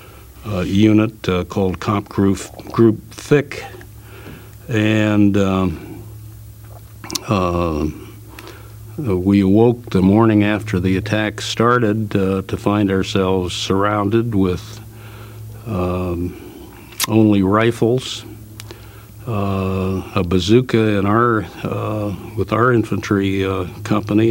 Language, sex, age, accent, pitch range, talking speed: English, male, 60-79, American, 95-110 Hz, 95 wpm